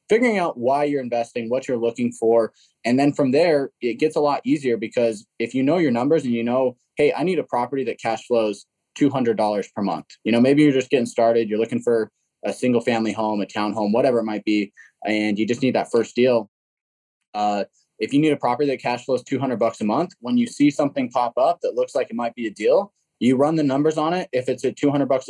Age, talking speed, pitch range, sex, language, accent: 20-39, 245 wpm, 115-145 Hz, male, English, American